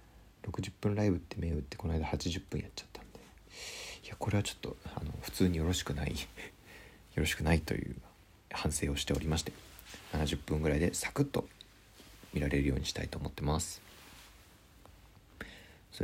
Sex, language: male, Japanese